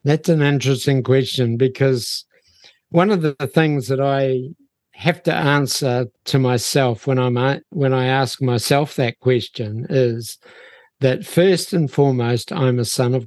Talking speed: 155 wpm